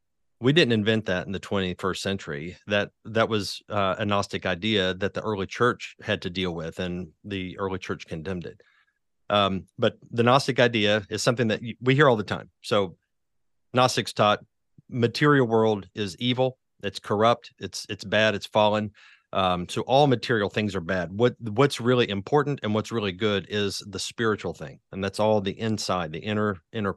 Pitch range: 95-115 Hz